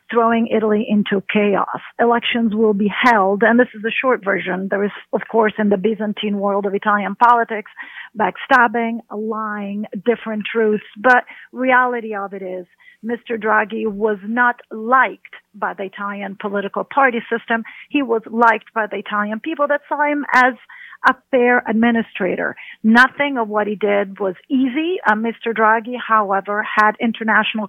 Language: English